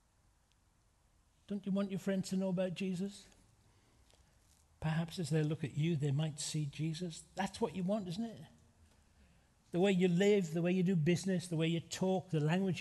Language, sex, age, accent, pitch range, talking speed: English, male, 60-79, British, 130-195 Hz, 185 wpm